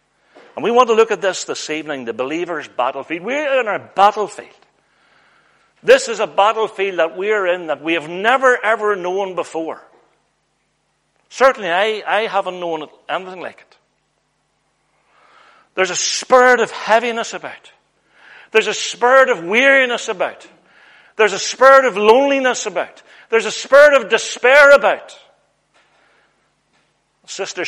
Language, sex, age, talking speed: English, male, 60-79, 140 wpm